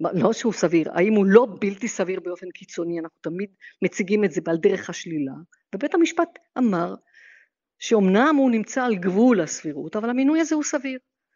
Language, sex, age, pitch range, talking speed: Hebrew, female, 50-69, 175-235 Hz, 170 wpm